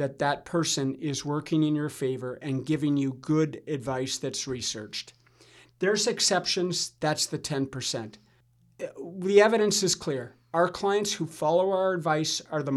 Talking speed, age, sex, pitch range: 150 wpm, 50-69, male, 135-185 Hz